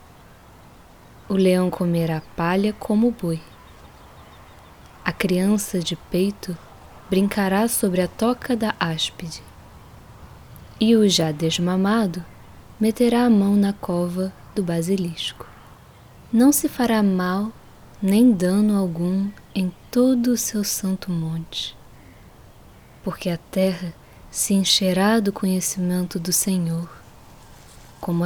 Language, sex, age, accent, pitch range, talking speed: Portuguese, female, 10-29, Brazilian, 170-200 Hz, 110 wpm